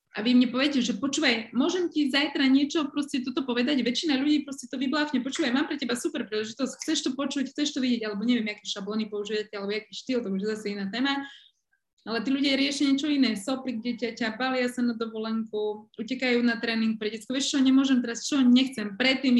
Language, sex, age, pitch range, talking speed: Slovak, female, 20-39, 210-265 Hz, 205 wpm